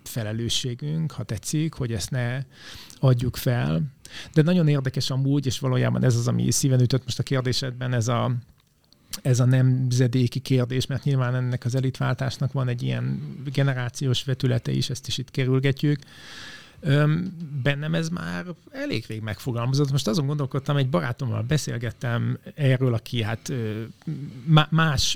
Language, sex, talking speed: Hungarian, male, 140 wpm